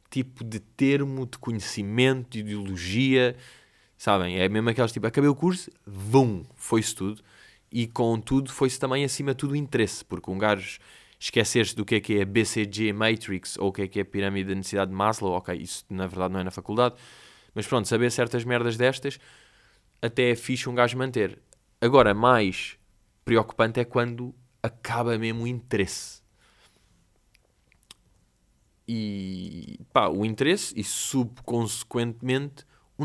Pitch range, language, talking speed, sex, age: 100-130 Hz, Portuguese, 155 wpm, male, 20-39